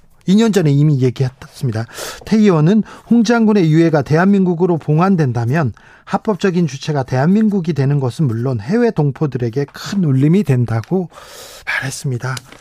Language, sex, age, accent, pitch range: Korean, male, 40-59, native, 140-185 Hz